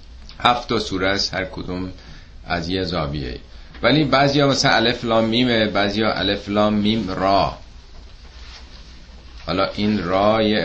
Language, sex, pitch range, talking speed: Persian, male, 80-110 Hz, 135 wpm